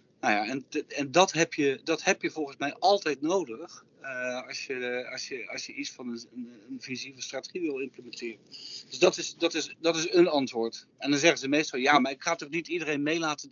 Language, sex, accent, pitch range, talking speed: Dutch, male, Dutch, 125-165 Hz, 230 wpm